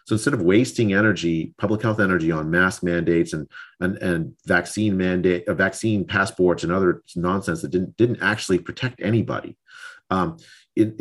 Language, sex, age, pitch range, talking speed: English, male, 40-59, 90-110 Hz, 160 wpm